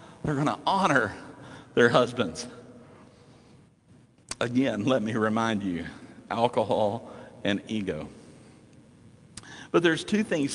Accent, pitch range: American, 130-170 Hz